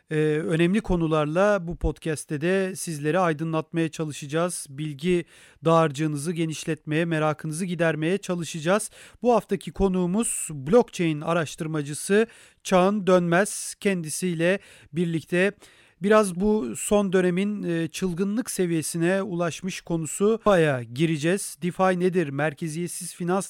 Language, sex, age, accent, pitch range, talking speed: Turkish, male, 40-59, native, 160-185 Hz, 95 wpm